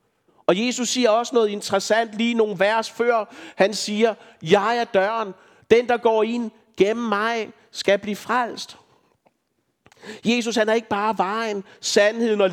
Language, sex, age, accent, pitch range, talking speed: Danish, male, 60-79, native, 200-230 Hz, 155 wpm